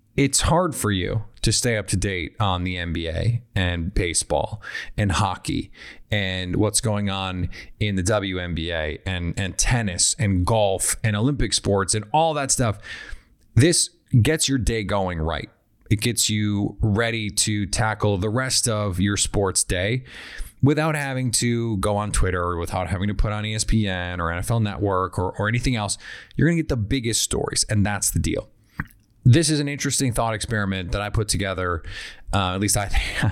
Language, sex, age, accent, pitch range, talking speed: English, male, 30-49, American, 100-120 Hz, 180 wpm